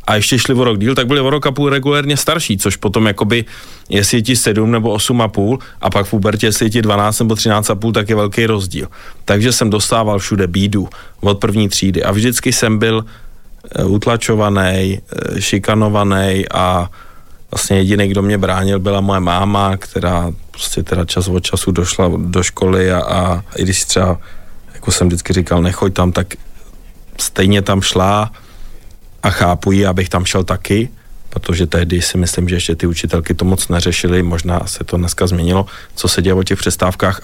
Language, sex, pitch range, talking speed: Slovak, male, 95-115 Hz, 190 wpm